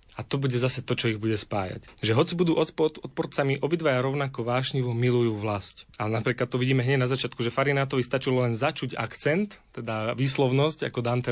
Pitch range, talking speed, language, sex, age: 120-140 Hz, 185 wpm, Slovak, male, 30-49